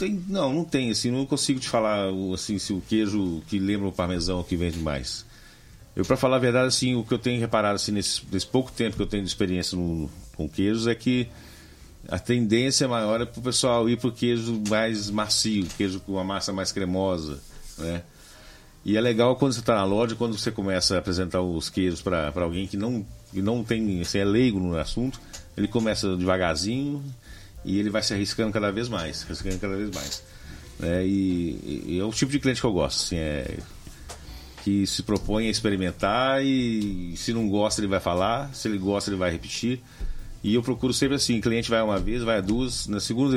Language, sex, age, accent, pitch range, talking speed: Portuguese, male, 50-69, Brazilian, 95-125 Hz, 205 wpm